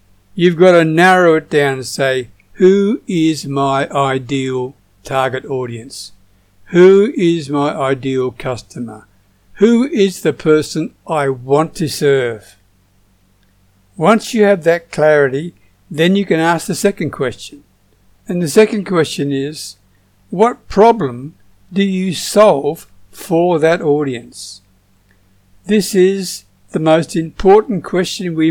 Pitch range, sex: 125-180 Hz, male